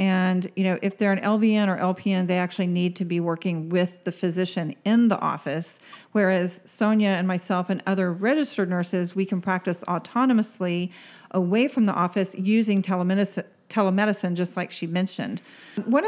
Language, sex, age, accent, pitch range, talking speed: English, female, 40-59, American, 180-210 Hz, 170 wpm